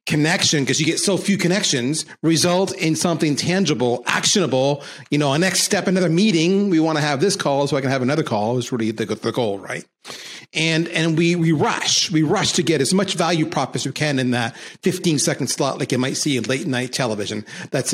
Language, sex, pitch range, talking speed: English, male, 140-210 Hz, 225 wpm